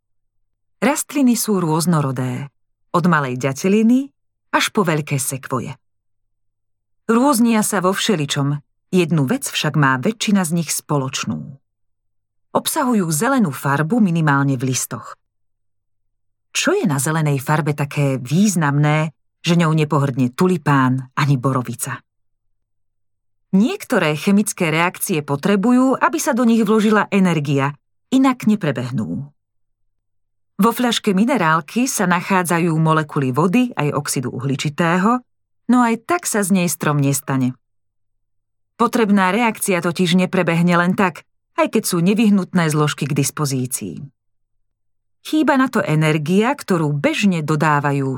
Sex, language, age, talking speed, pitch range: female, Slovak, 40-59, 115 wpm, 125-190 Hz